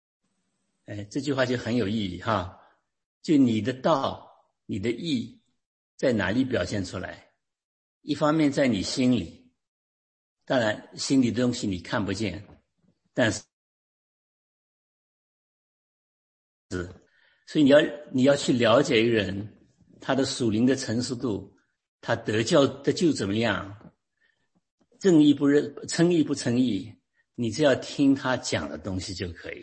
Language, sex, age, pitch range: English, male, 50-69, 95-135 Hz